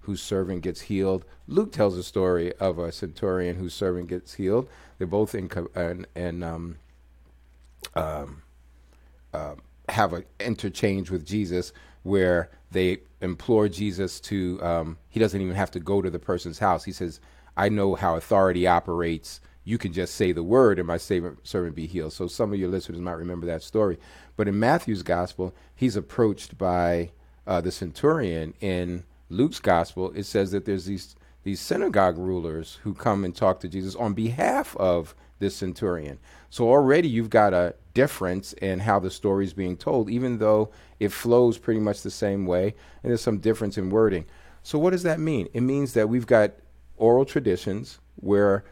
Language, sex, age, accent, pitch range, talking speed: English, male, 40-59, American, 85-105 Hz, 180 wpm